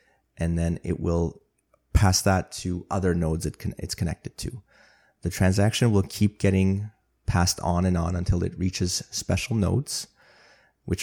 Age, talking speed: 30-49, 150 wpm